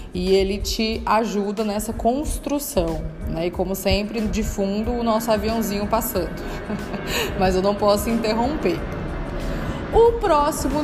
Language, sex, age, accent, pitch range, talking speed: Portuguese, female, 20-39, Brazilian, 195-260 Hz, 125 wpm